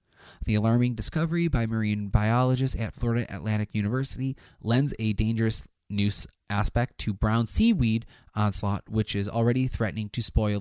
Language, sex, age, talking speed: English, male, 20-39, 140 wpm